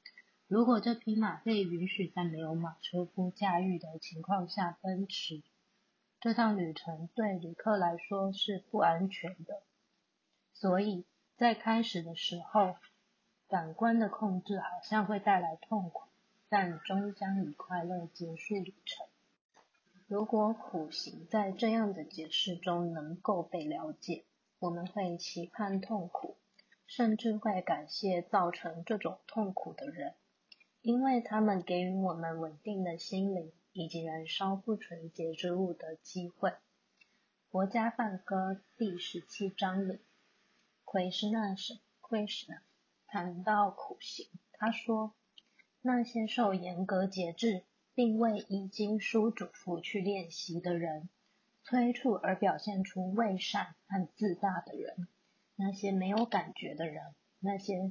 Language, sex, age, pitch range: Chinese, female, 20-39, 175-215 Hz